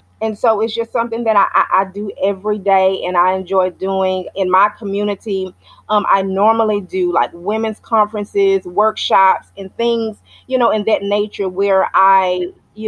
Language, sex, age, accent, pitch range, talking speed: English, female, 30-49, American, 190-235 Hz, 170 wpm